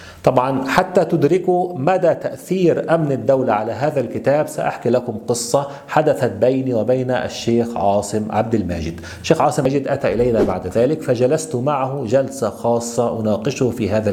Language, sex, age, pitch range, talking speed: Arabic, male, 40-59, 115-150 Hz, 145 wpm